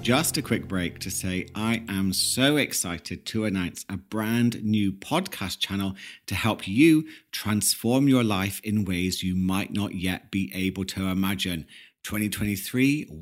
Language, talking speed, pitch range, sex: English, 155 wpm, 95-125 Hz, male